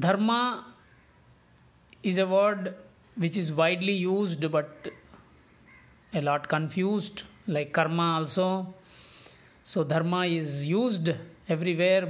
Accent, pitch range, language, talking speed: Indian, 145-195 Hz, English, 100 wpm